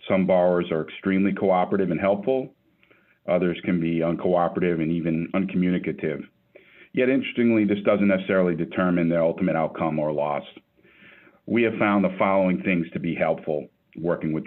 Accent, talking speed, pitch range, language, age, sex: American, 150 wpm, 80-100 Hz, English, 50-69, male